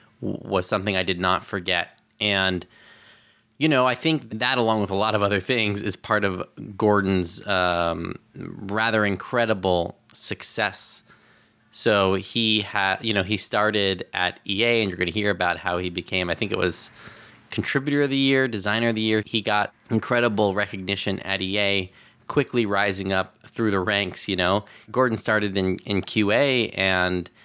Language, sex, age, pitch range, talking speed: English, male, 20-39, 95-110 Hz, 170 wpm